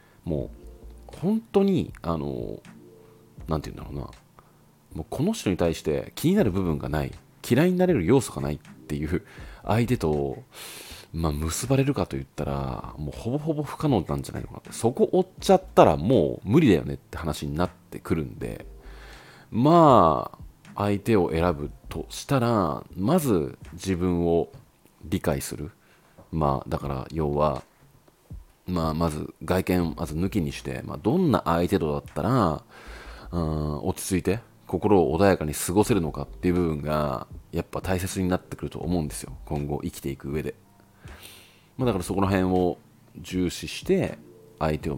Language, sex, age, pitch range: Japanese, male, 40-59, 75-105 Hz